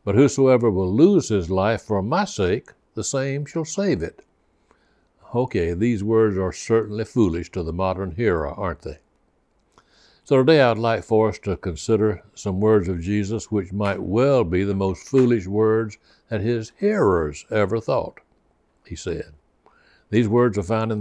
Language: English